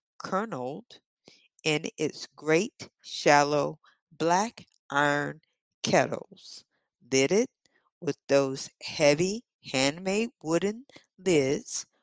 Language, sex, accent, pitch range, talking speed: English, female, American, 140-205 Hz, 80 wpm